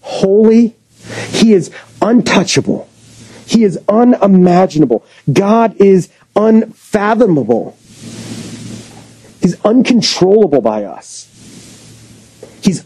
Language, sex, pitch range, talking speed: English, male, 125-190 Hz, 70 wpm